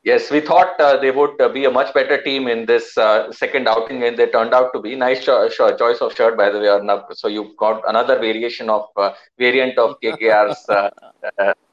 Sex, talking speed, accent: male, 230 wpm, Indian